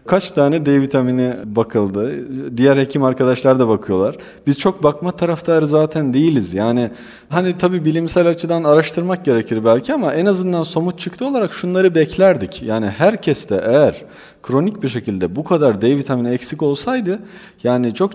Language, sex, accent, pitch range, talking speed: Turkish, male, native, 125-180 Hz, 150 wpm